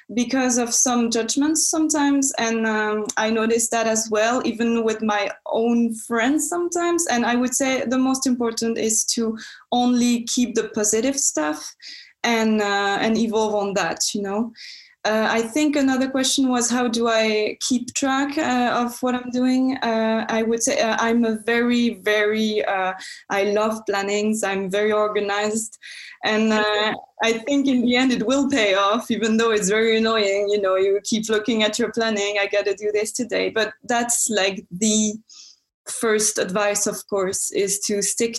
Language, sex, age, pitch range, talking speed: English, female, 20-39, 205-245 Hz, 175 wpm